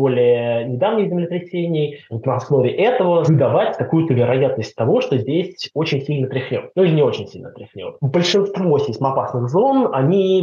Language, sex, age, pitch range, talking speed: Russian, male, 20-39, 120-155 Hz, 150 wpm